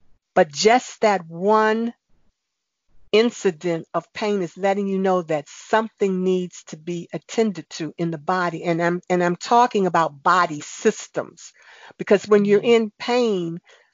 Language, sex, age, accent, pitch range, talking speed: English, female, 50-69, American, 175-210 Hz, 140 wpm